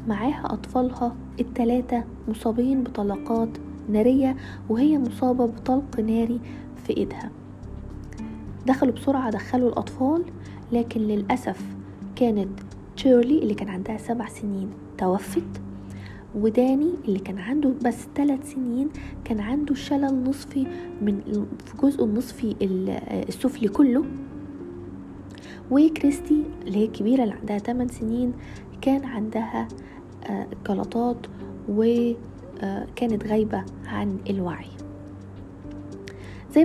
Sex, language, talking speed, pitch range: female, Arabic, 95 wpm, 200-270 Hz